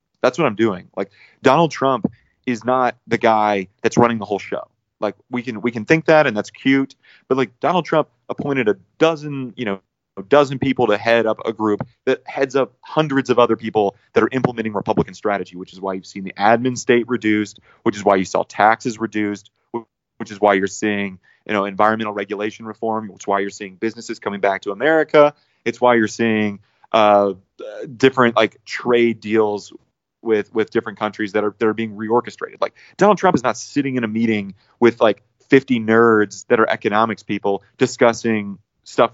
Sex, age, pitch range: male, 30-49, 105-125 Hz